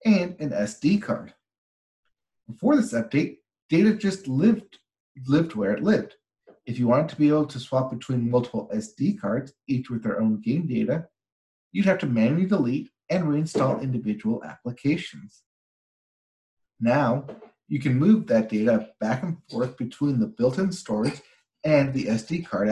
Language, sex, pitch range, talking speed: English, male, 120-170 Hz, 155 wpm